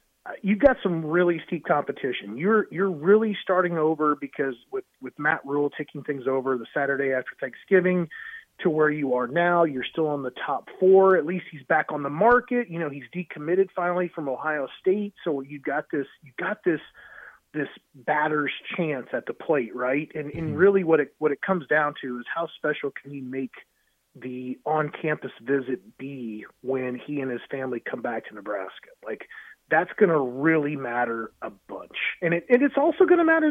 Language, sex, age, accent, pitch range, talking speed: English, male, 30-49, American, 145-200 Hz, 195 wpm